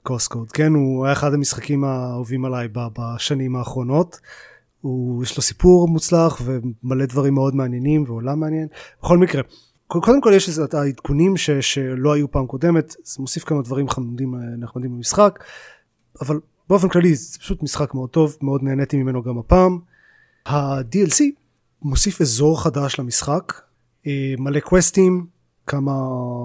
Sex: male